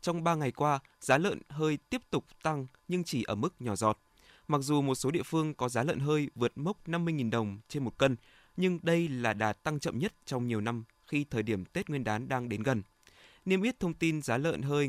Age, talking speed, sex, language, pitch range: 20-39, 240 wpm, male, Vietnamese, 115-155 Hz